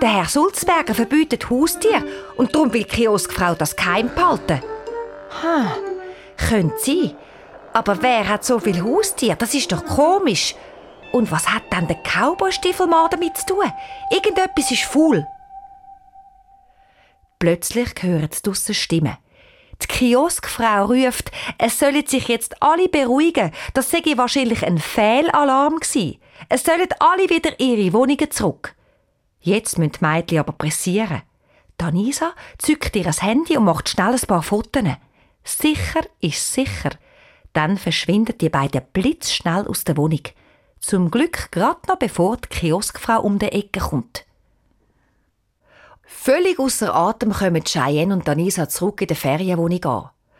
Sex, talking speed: female, 135 wpm